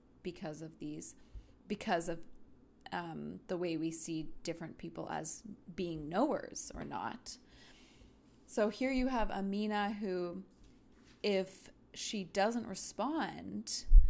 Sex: female